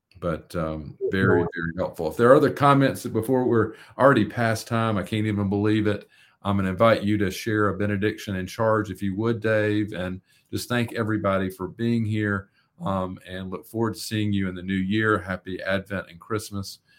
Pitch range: 95-115 Hz